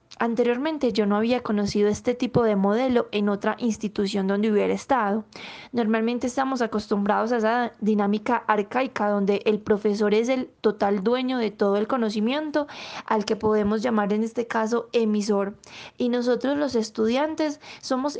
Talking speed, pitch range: 150 wpm, 210-250 Hz